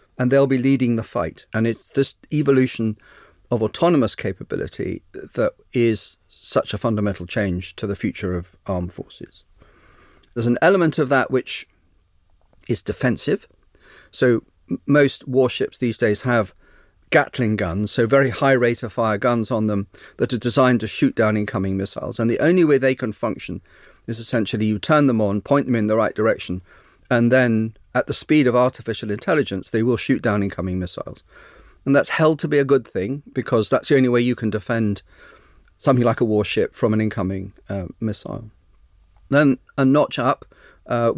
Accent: British